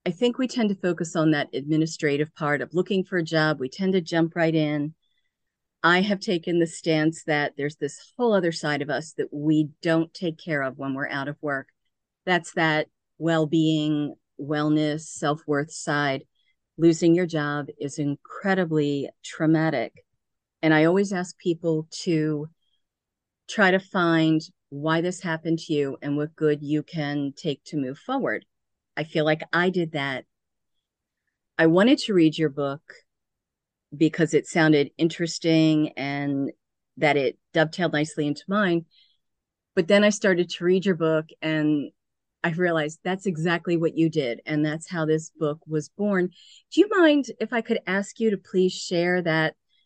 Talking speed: 165 wpm